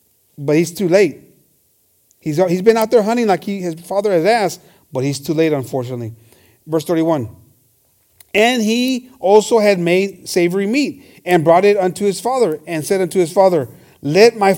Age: 40-59